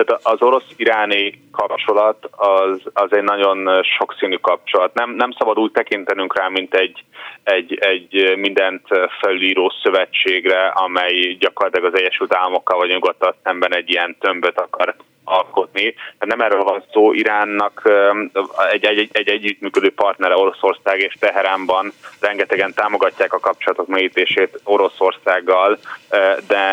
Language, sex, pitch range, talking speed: Hungarian, male, 95-105 Hz, 130 wpm